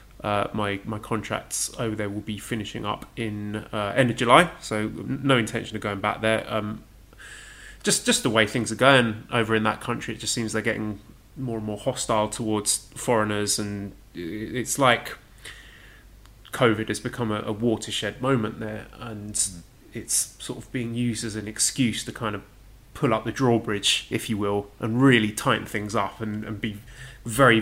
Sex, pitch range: male, 105-120 Hz